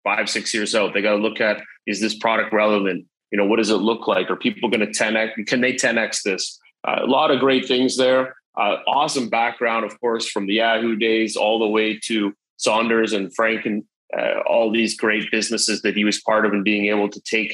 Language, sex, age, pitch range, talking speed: English, male, 30-49, 100-115 Hz, 235 wpm